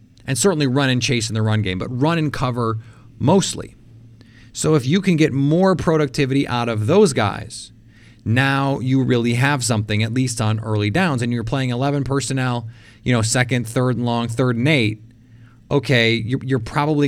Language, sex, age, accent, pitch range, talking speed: English, male, 30-49, American, 115-135 Hz, 185 wpm